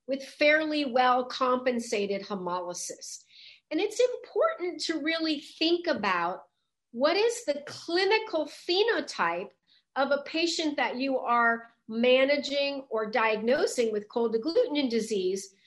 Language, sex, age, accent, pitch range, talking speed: English, female, 40-59, American, 230-305 Hz, 115 wpm